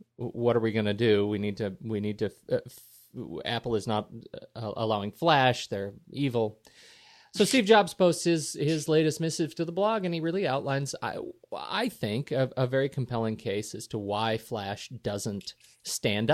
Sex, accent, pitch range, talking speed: male, American, 110-140 Hz, 185 wpm